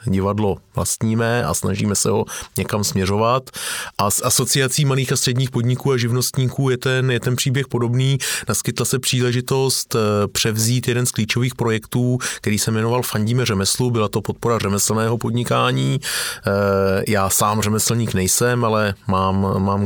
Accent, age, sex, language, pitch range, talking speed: native, 30-49, male, Czech, 100-120 Hz, 145 wpm